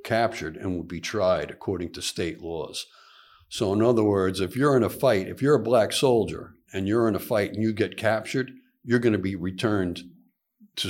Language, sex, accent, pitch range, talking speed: English, male, American, 90-110 Hz, 210 wpm